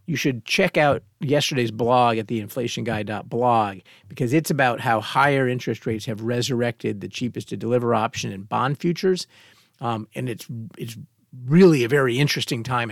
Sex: male